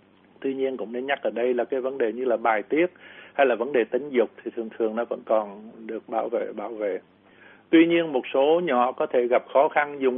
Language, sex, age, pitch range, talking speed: Vietnamese, male, 60-79, 115-140 Hz, 255 wpm